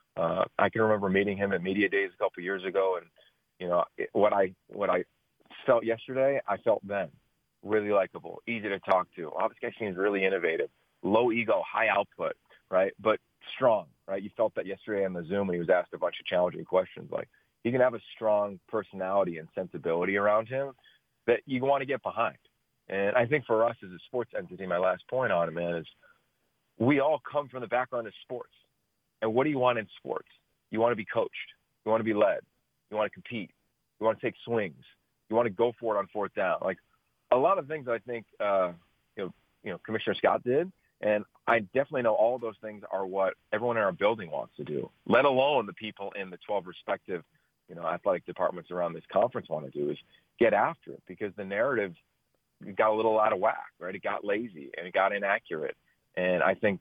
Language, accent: English, American